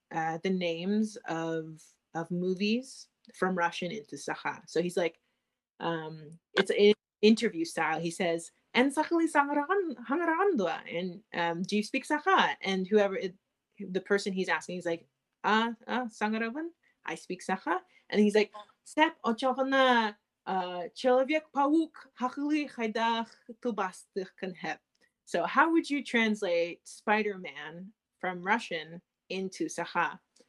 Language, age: Russian, 30-49